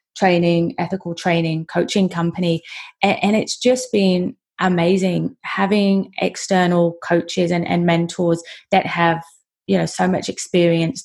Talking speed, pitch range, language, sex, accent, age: 130 wpm, 165-185 Hz, English, female, British, 20-39